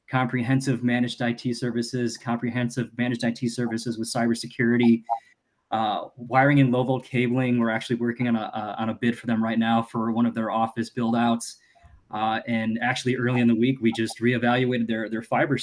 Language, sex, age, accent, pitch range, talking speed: English, male, 20-39, American, 115-130 Hz, 190 wpm